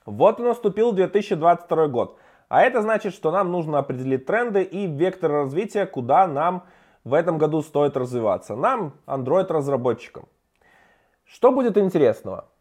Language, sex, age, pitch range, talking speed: Russian, male, 20-39, 145-185 Hz, 135 wpm